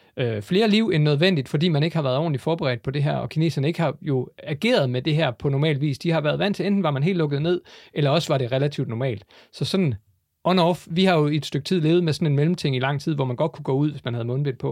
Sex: male